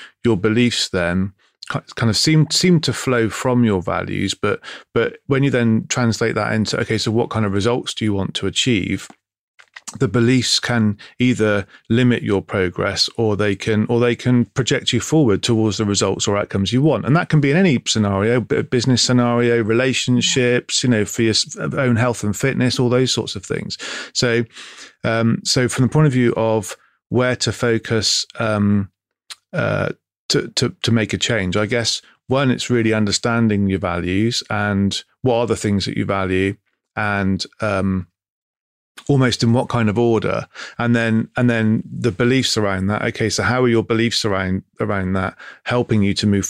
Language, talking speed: English, 185 wpm